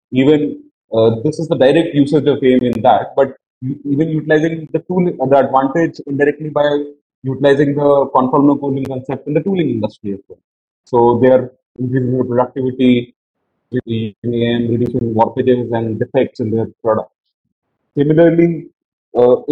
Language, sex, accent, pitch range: English, male, Indian, 115-145 Hz